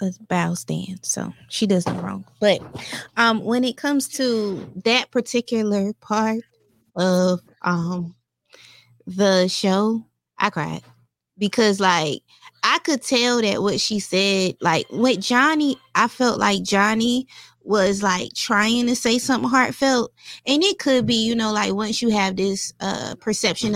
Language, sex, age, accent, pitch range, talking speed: English, female, 20-39, American, 170-220 Hz, 150 wpm